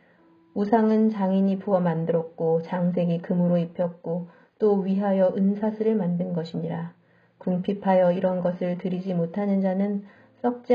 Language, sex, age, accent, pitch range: Korean, female, 40-59, native, 175-205 Hz